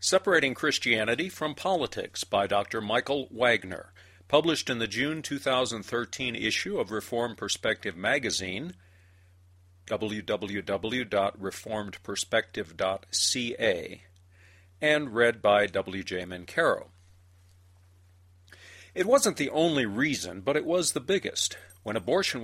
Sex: male